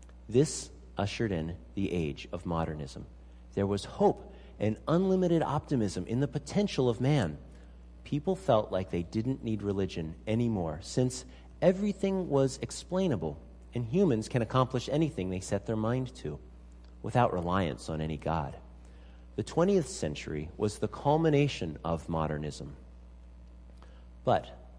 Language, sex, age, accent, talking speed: English, male, 50-69, American, 130 wpm